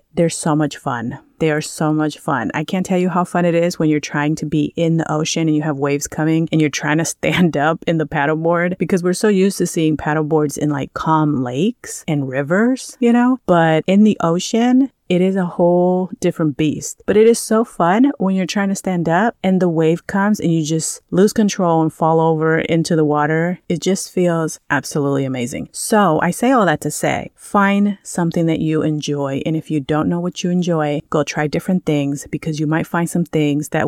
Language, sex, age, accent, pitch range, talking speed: English, female, 30-49, American, 155-185 Hz, 225 wpm